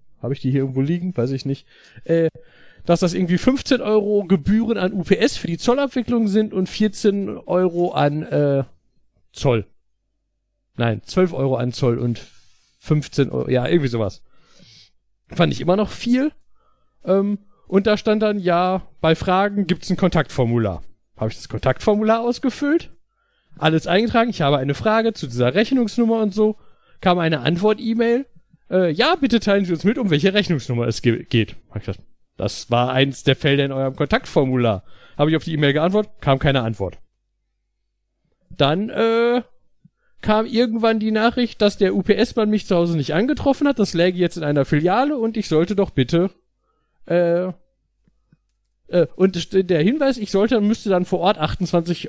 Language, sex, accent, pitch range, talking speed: German, male, German, 140-215 Hz, 165 wpm